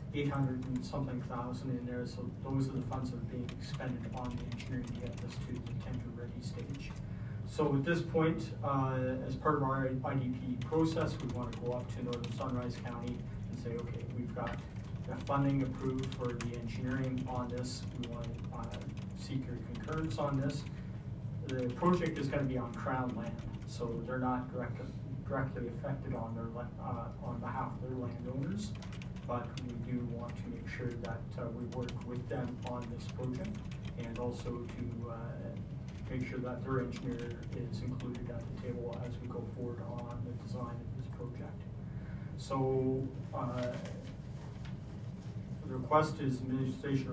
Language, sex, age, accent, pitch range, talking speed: English, male, 40-59, American, 120-130 Hz, 170 wpm